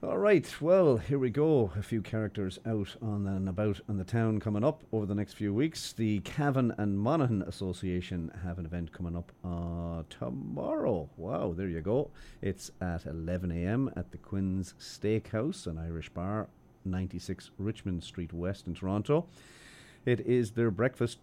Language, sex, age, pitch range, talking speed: English, male, 40-59, 85-105 Hz, 165 wpm